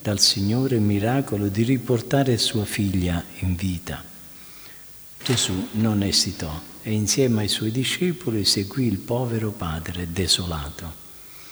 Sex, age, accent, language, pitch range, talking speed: male, 50-69, native, Italian, 100-130 Hz, 115 wpm